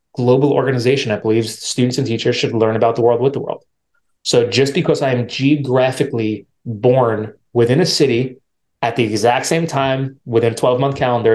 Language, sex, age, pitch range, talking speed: English, male, 30-49, 120-145 Hz, 185 wpm